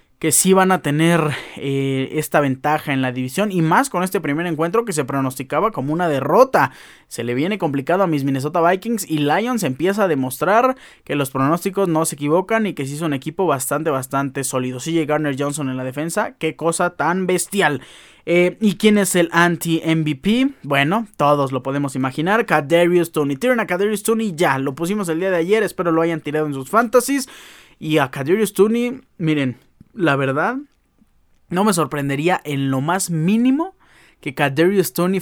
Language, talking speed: Spanish, 180 wpm